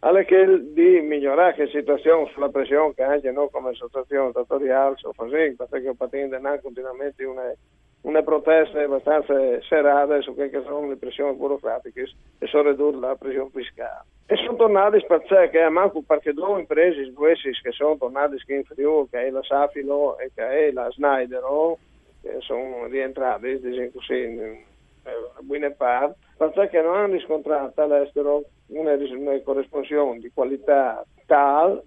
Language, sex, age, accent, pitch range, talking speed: Italian, male, 50-69, native, 135-160 Hz, 140 wpm